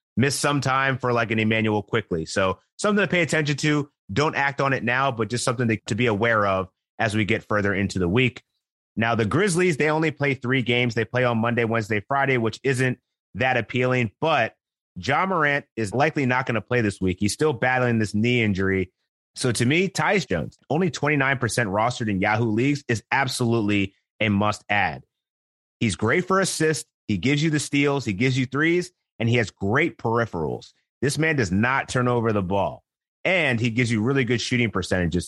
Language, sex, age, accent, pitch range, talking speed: English, male, 30-49, American, 110-135 Hz, 200 wpm